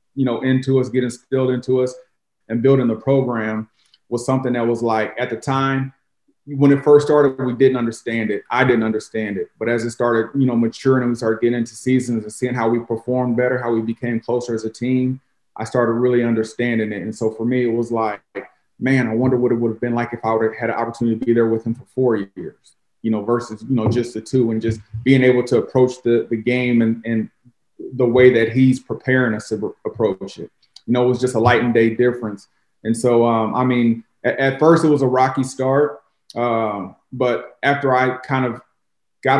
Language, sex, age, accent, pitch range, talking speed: English, male, 30-49, American, 115-130 Hz, 230 wpm